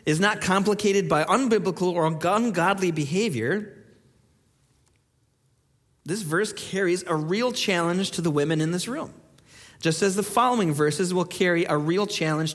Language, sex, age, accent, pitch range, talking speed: English, male, 40-59, American, 175-255 Hz, 145 wpm